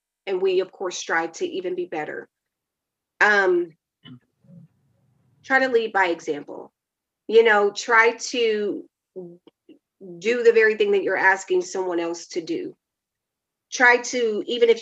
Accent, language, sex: American, English, female